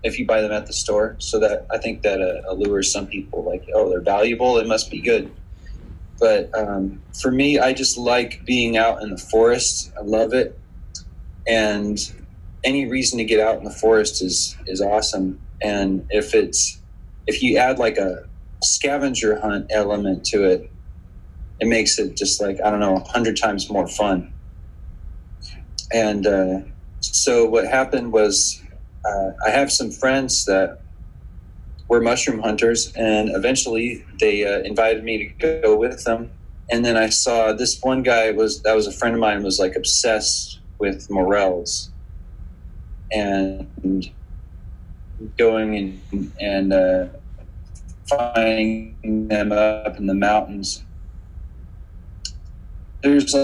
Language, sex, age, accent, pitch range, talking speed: English, male, 30-49, American, 90-115 Hz, 150 wpm